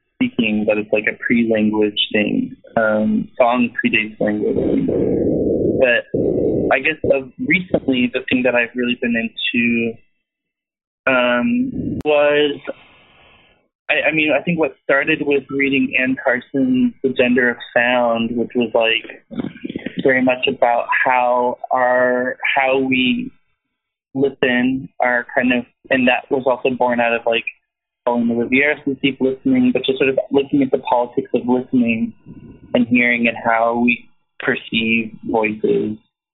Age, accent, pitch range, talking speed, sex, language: 20-39, American, 115-145 Hz, 135 wpm, male, English